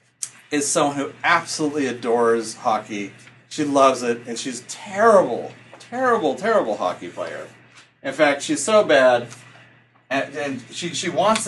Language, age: English, 40-59